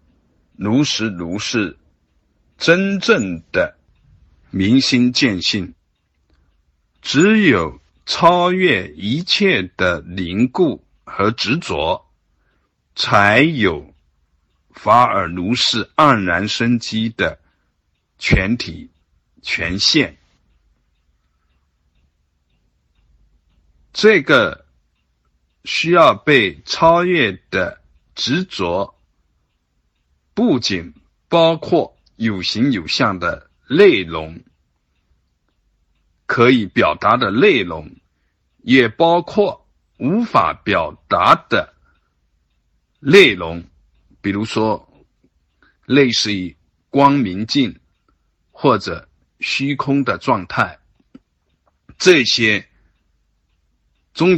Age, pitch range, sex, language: 60-79, 75-115 Hz, male, Chinese